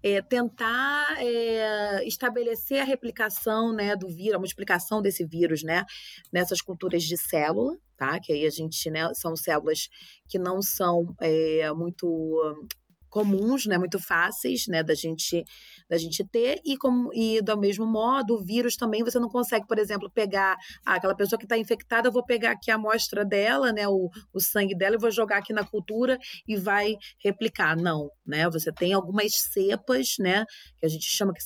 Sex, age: female, 30-49